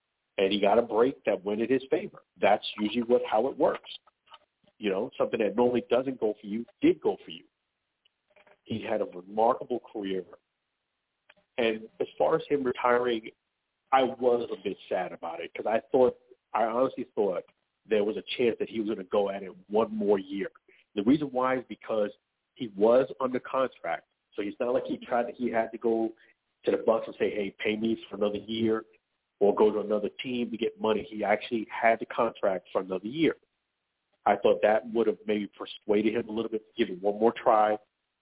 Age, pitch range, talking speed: 50-69, 105-125 Hz, 210 wpm